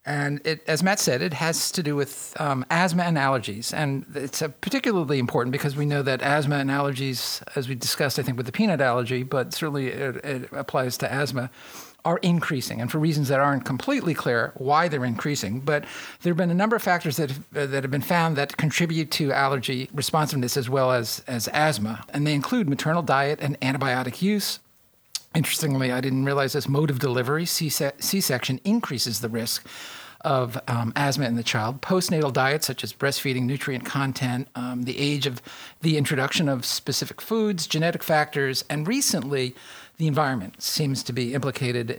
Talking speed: 180 wpm